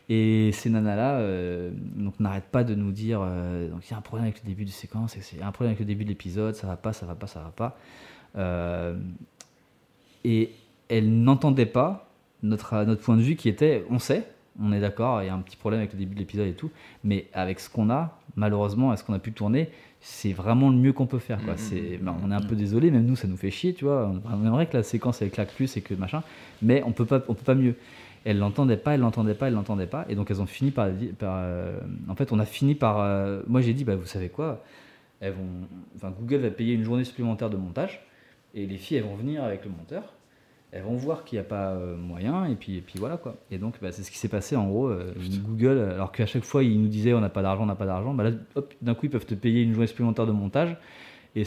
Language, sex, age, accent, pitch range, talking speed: French, male, 20-39, French, 95-120 Hz, 270 wpm